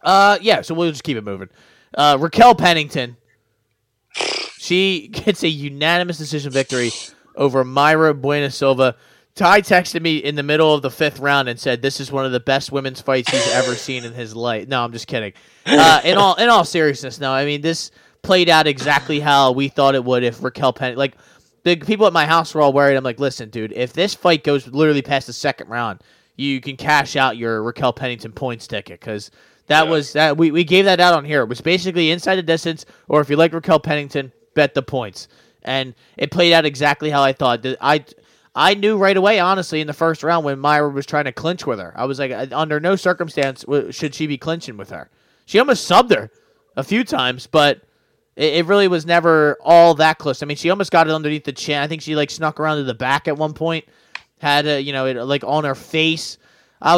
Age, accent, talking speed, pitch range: 20-39, American, 225 wpm, 135-165 Hz